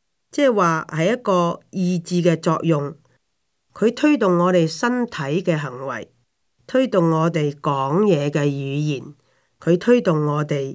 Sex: female